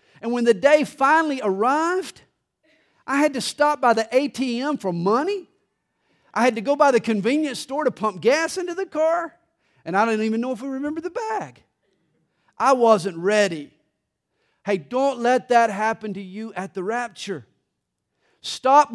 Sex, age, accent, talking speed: male, 50-69, American, 170 wpm